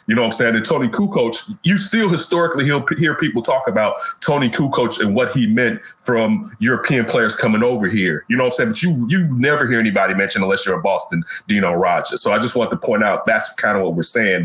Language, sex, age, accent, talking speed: English, male, 30-49, American, 250 wpm